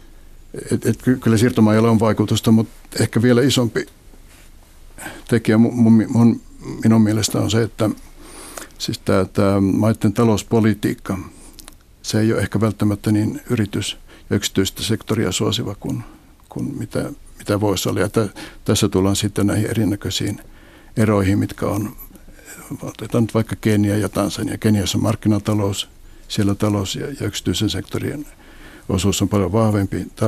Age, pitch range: 60-79, 100-110 Hz